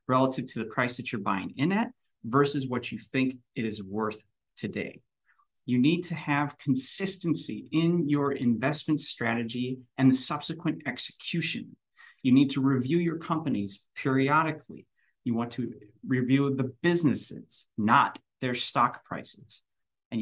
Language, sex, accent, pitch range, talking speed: English, male, American, 120-160 Hz, 140 wpm